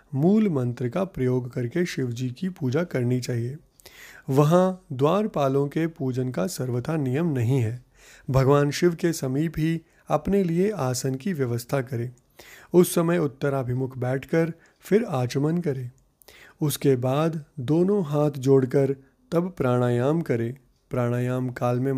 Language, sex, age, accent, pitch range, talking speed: Hindi, male, 30-49, native, 130-170 Hz, 130 wpm